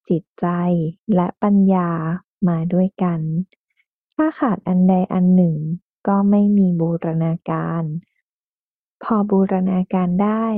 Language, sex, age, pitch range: Thai, female, 20-39, 180-215 Hz